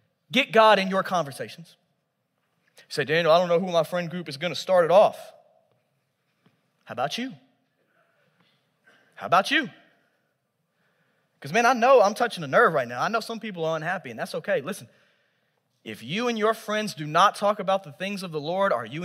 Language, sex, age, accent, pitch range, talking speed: English, male, 20-39, American, 145-200 Hz, 190 wpm